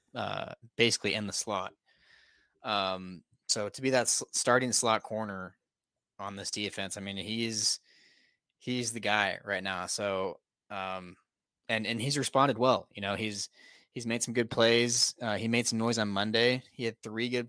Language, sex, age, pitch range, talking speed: English, male, 20-39, 100-120 Hz, 175 wpm